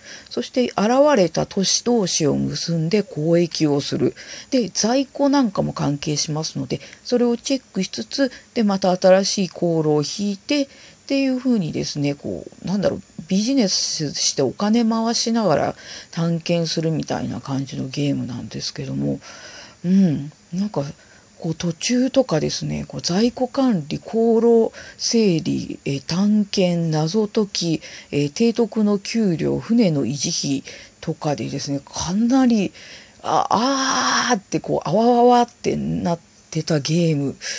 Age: 40-59